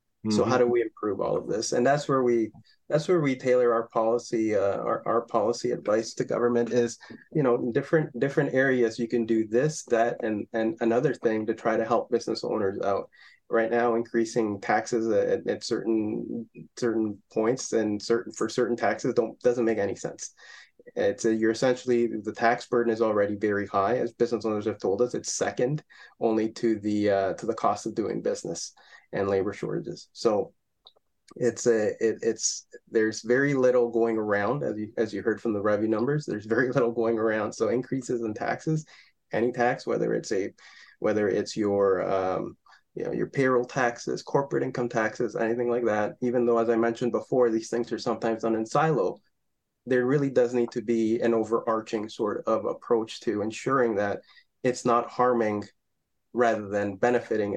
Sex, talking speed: male, 185 wpm